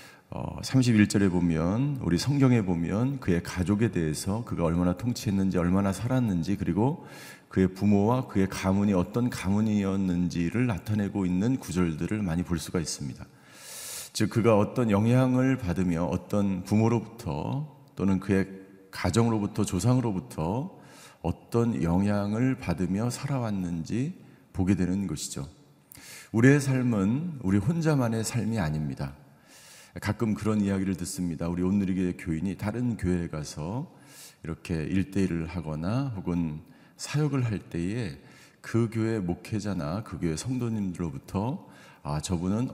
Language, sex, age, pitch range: Korean, male, 50-69, 90-120 Hz